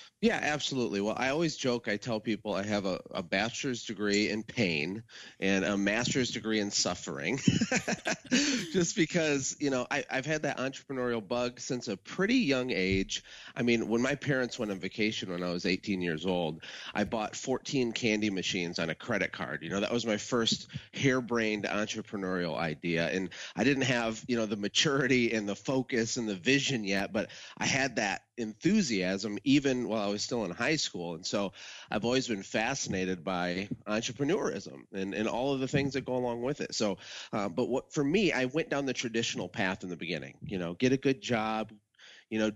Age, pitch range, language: 30-49, 105-130 Hz, English